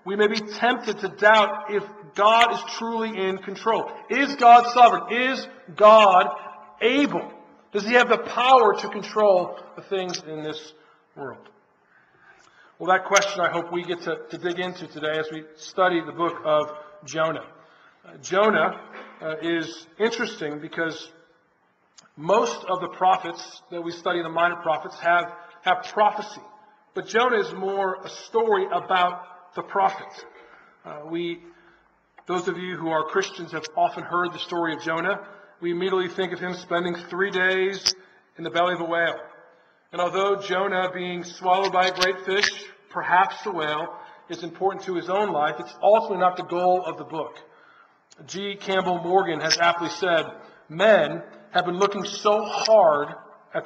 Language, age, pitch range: English, 40-59, 170-210 Hz